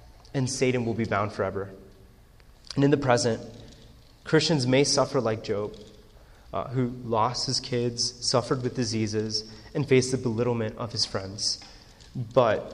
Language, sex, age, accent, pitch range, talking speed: English, male, 30-49, American, 110-135 Hz, 145 wpm